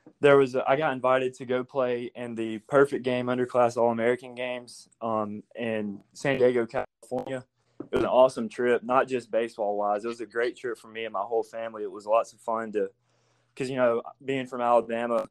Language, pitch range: English, 120-135 Hz